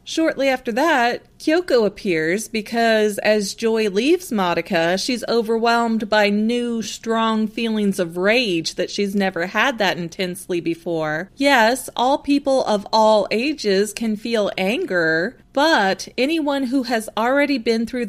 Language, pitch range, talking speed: English, 195-255 Hz, 135 wpm